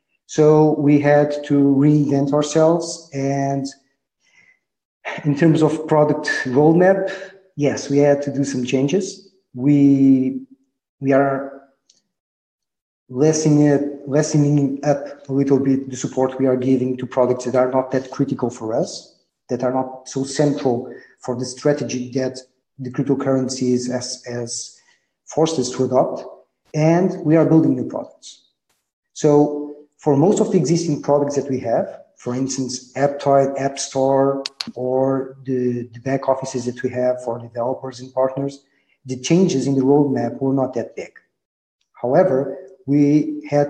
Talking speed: 140 wpm